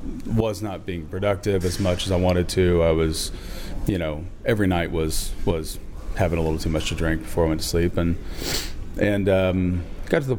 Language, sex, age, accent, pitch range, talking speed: English, male, 30-49, American, 80-105 Hz, 210 wpm